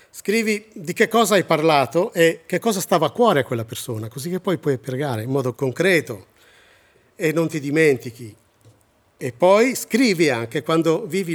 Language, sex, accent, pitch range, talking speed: Italian, male, native, 125-155 Hz, 175 wpm